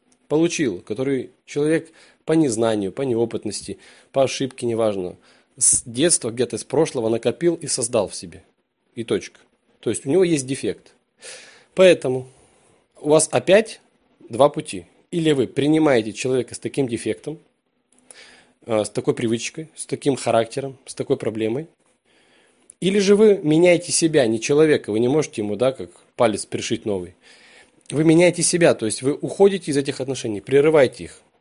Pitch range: 115-165 Hz